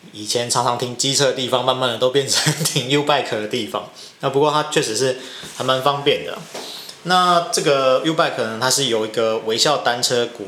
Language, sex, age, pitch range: Chinese, male, 20-39, 120-145 Hz